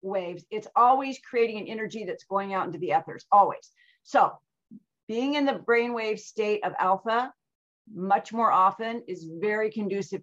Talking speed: 160 wpm